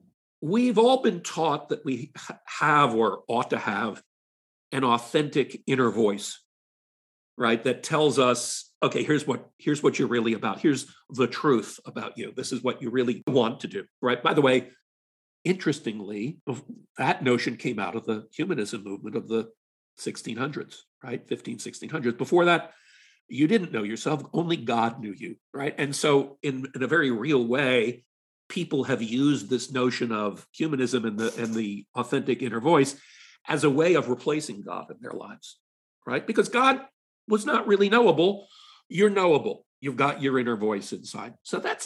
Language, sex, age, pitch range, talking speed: English, male, 50-69, 120-180 Hz, 170 wpm